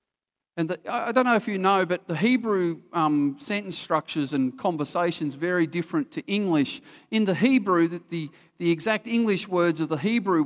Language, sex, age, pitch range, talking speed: English, male, 40-59, 125-180 Hz, 185 wpm